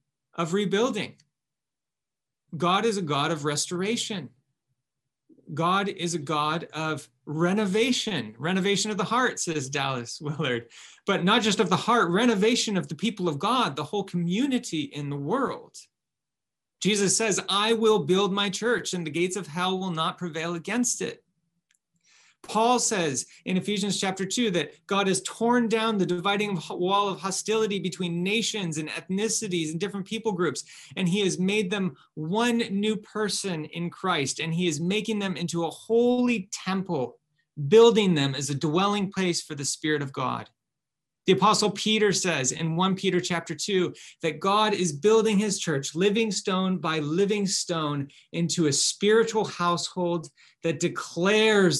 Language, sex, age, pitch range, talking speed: English, male, 30-49, 155-200 Hz, 160 wpm